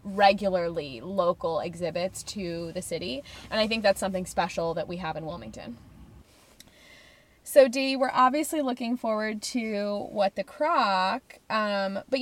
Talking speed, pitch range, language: 140 wpm, 190-255 Hz, English